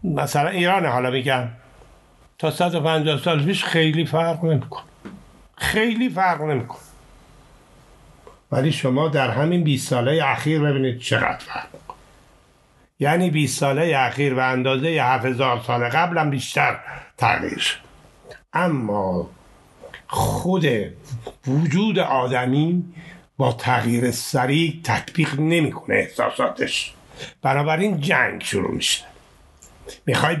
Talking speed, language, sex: 100 wpm, Persian, male